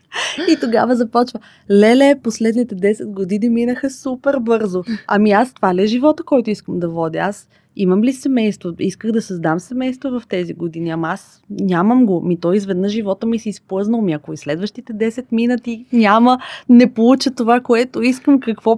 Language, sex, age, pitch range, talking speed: Bulgarian, female, 20-39, 180-230 Hz, 175 wpm